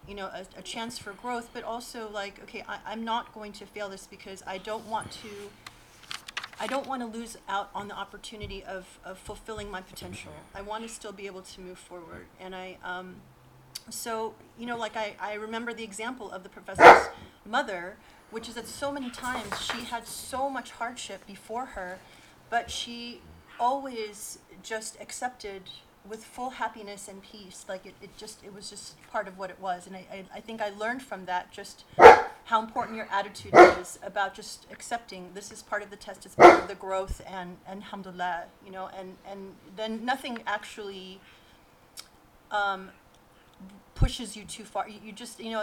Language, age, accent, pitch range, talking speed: English, 30-49, American, 190-225 Hz, 190 wpm